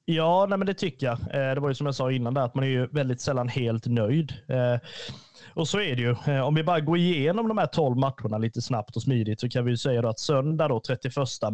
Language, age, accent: Swedish, 30-49, native